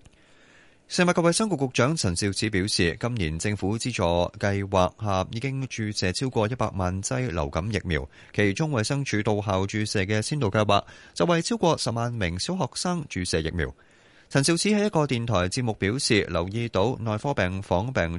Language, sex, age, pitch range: Chinese, male, 30-49, 90-130 Hz